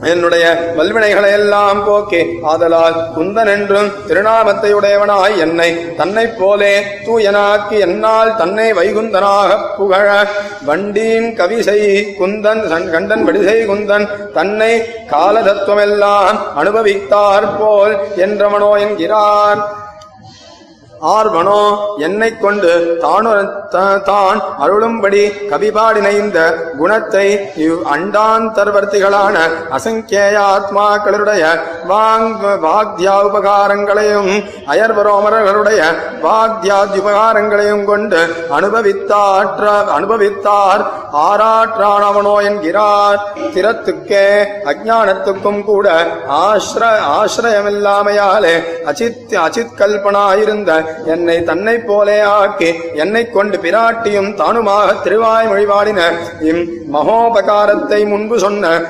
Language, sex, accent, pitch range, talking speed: Tamil, male, native, 195-210 Hz, 50 wpm